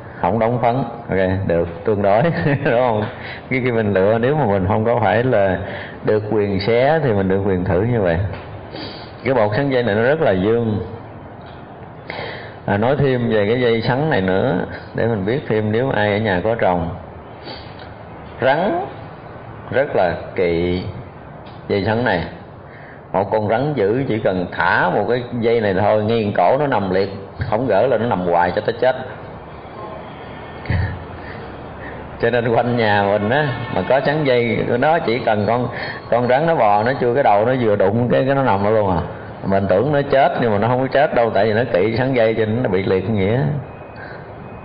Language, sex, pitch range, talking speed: Vietnamese, male, 95-120 Hz, 195 wpm